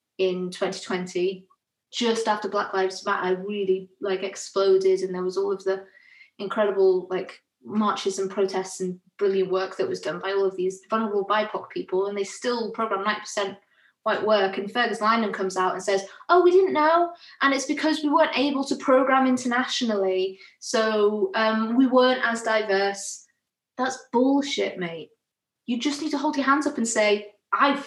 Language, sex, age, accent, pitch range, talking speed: English, female, 20-39, British, 195-255 Hz, 175 wpm